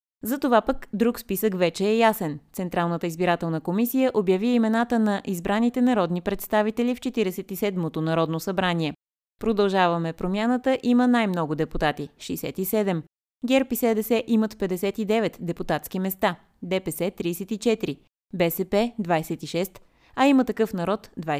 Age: 20-39